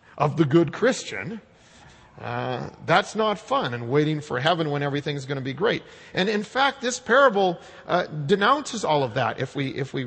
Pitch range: 120-165 Hz